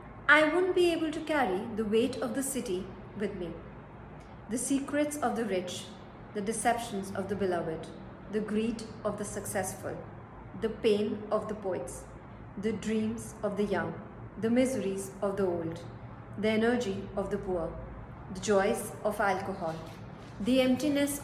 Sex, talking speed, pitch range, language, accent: female, 155 wpm, 165-225 Hz, English, Indian